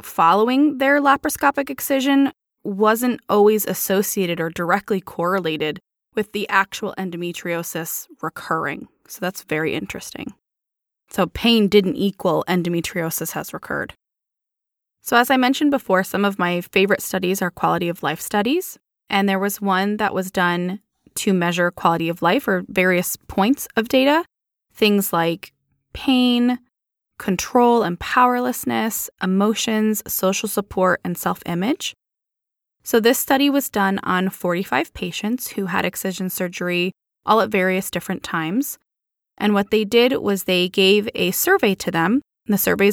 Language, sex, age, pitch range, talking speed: English, female, 20-39, 180-235 Hz, 140 wpm